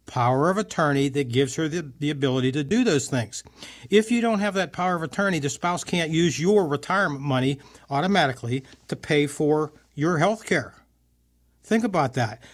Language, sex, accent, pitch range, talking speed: English, male, American, 130-165 Hz, 180 wpm